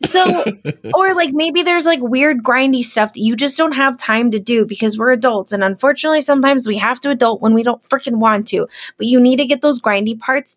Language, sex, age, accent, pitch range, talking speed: English, female, 10-29, American, 205-265 Hz, 235 wpm